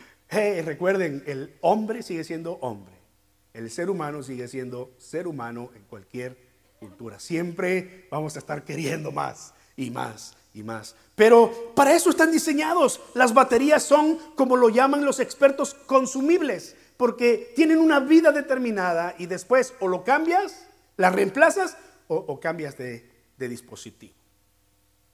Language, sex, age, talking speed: Spanish, male, 50-69, 140 wpm